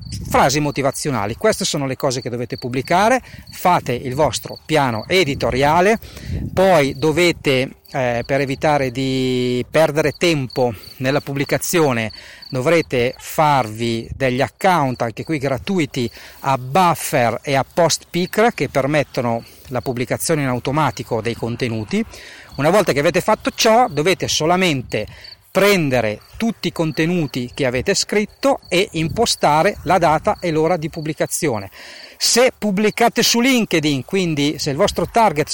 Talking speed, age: 130 wpm, 40-59